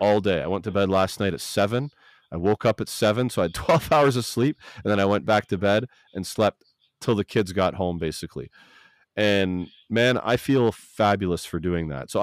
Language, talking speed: English, 225 wpm